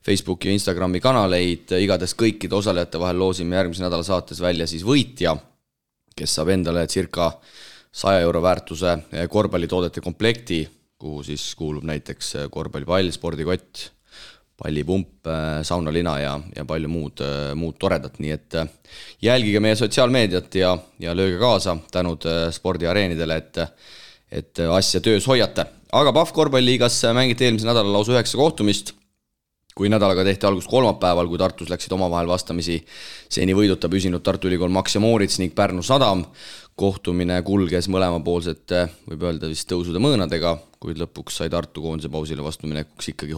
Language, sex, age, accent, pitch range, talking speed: English, male, 30-49, Finnish, 80-100 Hz, 145 wpm